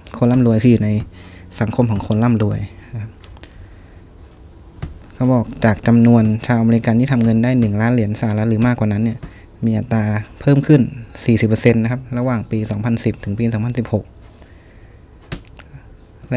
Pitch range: 85-120 Hz